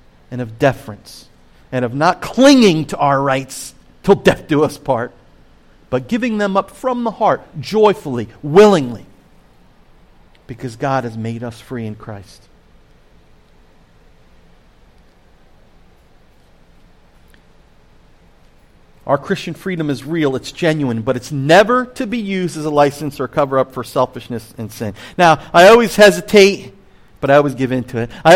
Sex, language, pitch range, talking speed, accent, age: male, English, 125-180 Hz, 140 wpm, American, 40-59